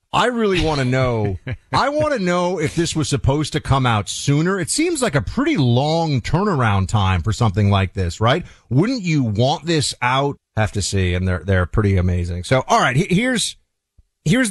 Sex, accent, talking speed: male, American, 200 wpm